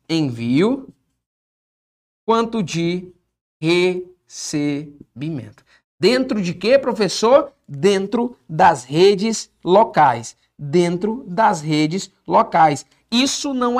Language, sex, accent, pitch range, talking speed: Portuguese, male, Brazilian, 160-245 Hz, 80 wpm